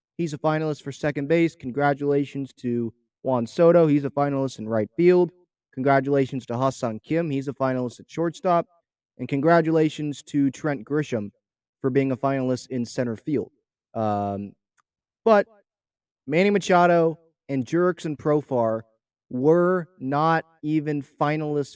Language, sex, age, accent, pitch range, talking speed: English, male, 30-49, American, 130-165 Hz, 135 wpm